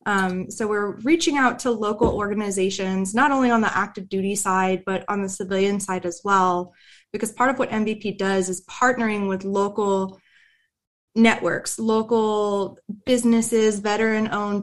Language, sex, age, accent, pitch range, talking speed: English, female, 20-39, American, 190-220 Hz, 150 wpm